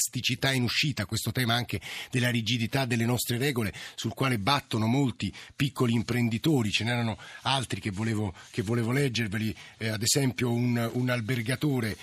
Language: Italian